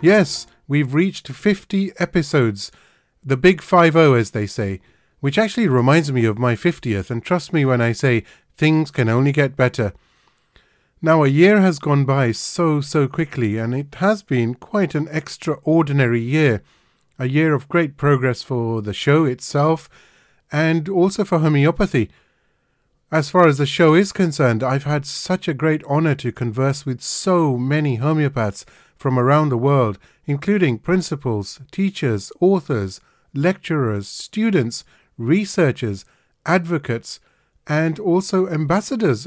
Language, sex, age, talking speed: English, male, 30-49, 145 wpm